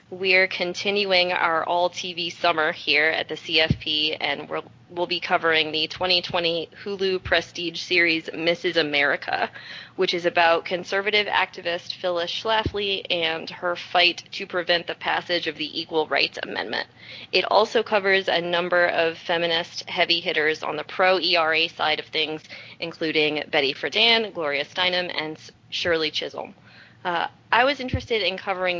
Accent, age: American, 30-49